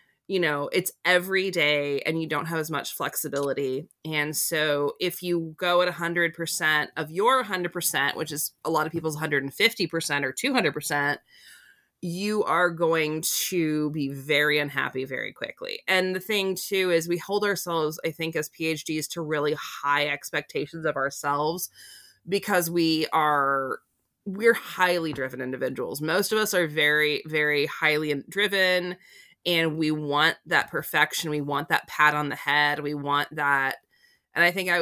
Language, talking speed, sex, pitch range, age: English, 160 wpm, female, 145-175 Hz, 20-39